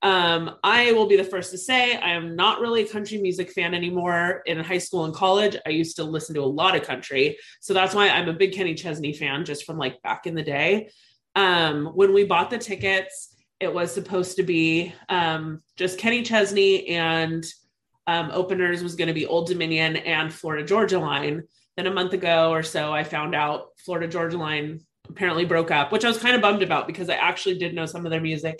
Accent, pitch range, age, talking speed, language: American, 160-195 Hz, 20-39, 220 wpm, English